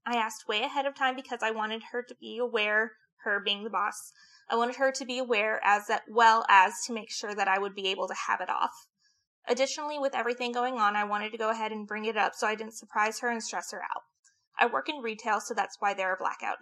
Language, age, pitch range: English, 20-39, 215-250 Hz